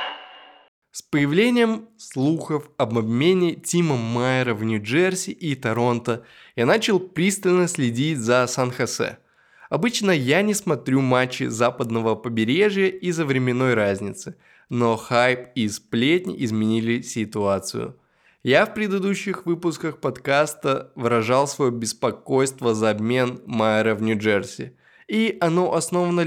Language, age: Russian, 20-39